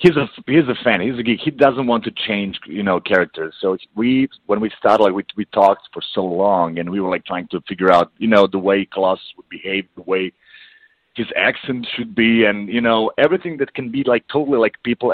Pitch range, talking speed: 95-125 Hz, 235 wpm